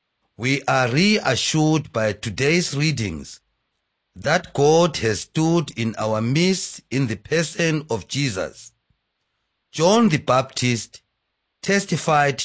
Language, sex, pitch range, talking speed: English, male, 115-165 Hz, 105 wpm